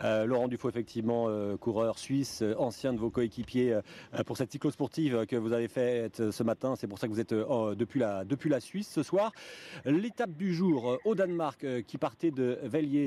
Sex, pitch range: male, 135-185 Hz